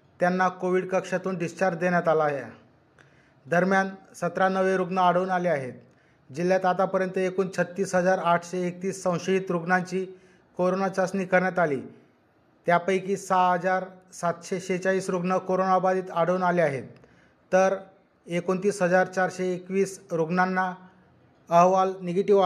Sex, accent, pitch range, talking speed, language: male, native, 175-190 Hz, 100 wpm, Marathi